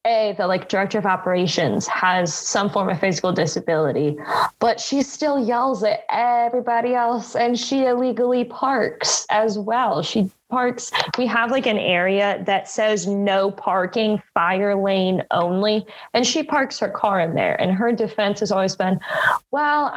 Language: English